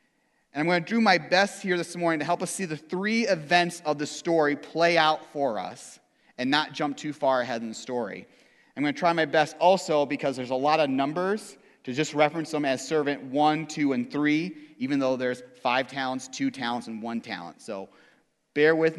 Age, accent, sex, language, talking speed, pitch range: 30-49, American, male, English, 220 wpm, 140-195 Hz